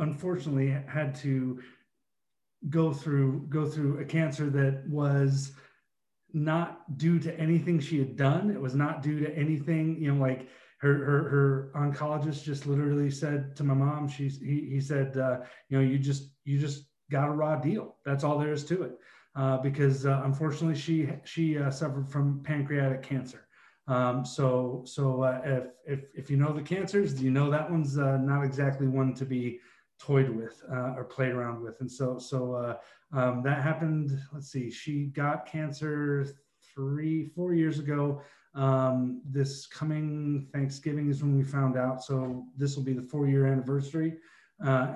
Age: 30-49